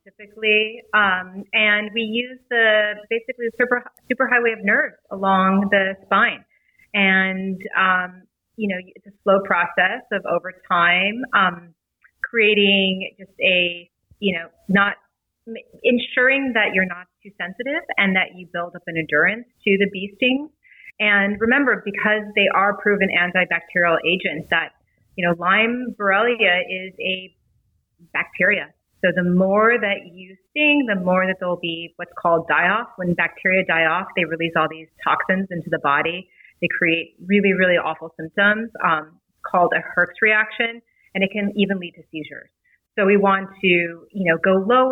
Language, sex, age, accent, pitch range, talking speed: English, female, 30-49, American, 175-215 Hz, 160 wpm